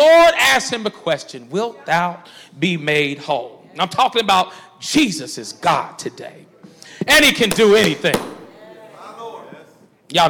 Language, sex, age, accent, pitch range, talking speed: English, male, 40-59, American, 170-250 Hz, 140 wpm